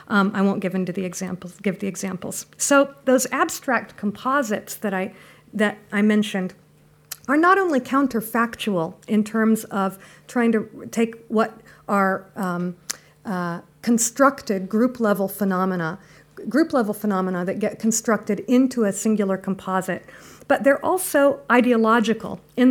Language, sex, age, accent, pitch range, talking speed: French, female, 50-69, American, 190-230 Hz, 135 wpm